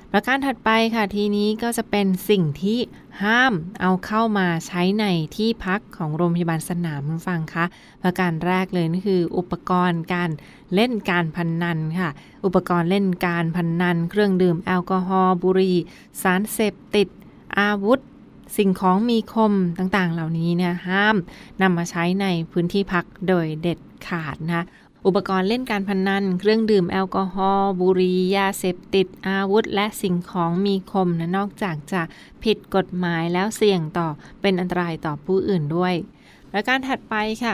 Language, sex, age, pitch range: Thai, female, 20-39, 175-205 Hz